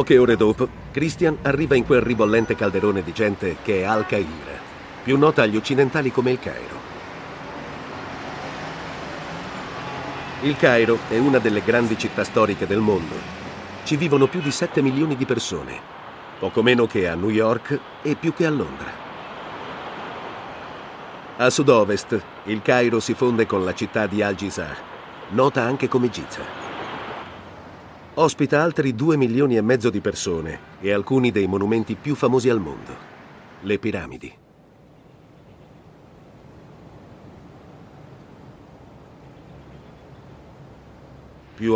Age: 50-69